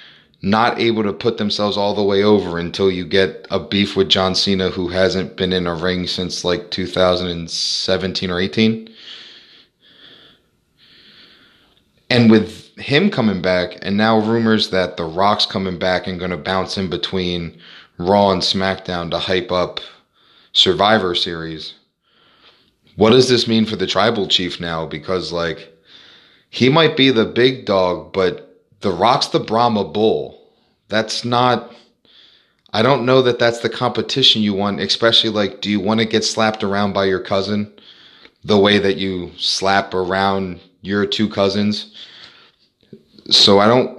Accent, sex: American, male